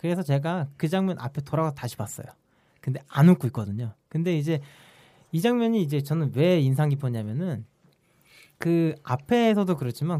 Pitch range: 130-190 Hz